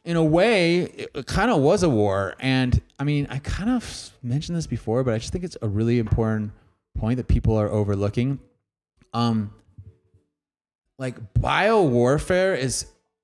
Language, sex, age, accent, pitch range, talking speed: English, male, 30-49, American, 105-135 Hz, 165 wpm